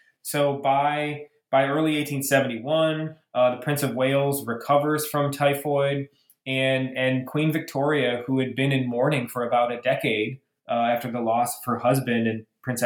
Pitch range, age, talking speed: 120-150 Hz, 20-39, 165 wpm